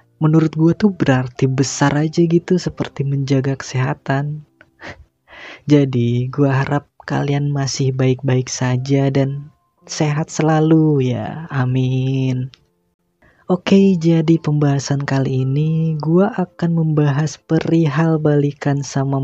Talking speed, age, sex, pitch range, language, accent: 105 wpm, 20-39, female, 135-155 Hz, Indonesian, native